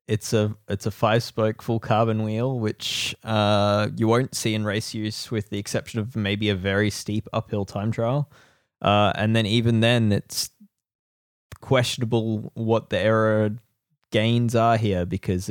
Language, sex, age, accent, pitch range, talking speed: English, male, 20-39, Australian, 105-125 Hz, 160 wpm